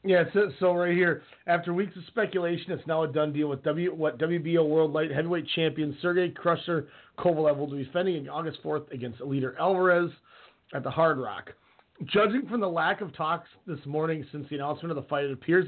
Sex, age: male, 30-49